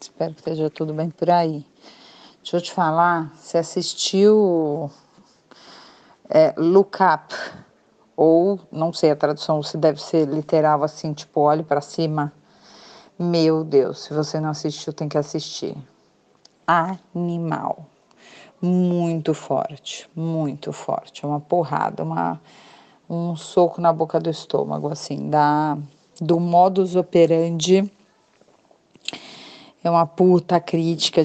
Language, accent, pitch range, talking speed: Portuguese, Brazilian, 155-175 Hz, 115 wpm